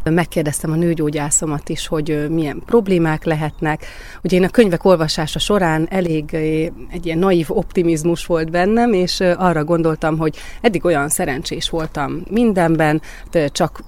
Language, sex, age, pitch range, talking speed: Hungarian, female, 30-49, 150-175 Hz, 135 wpm